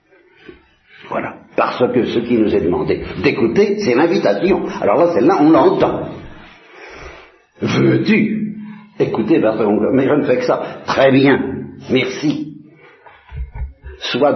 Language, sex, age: Italian, male, 60-79